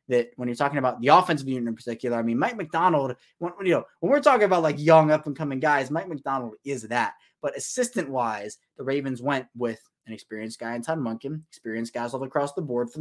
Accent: American